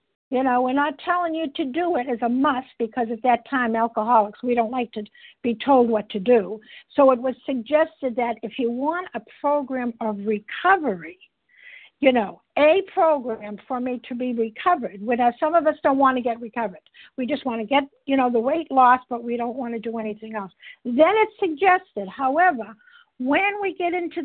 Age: 60-79